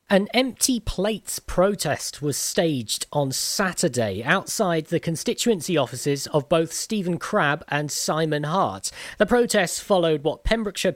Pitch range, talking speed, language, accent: 140-190 Hz, 130 wpm, English, British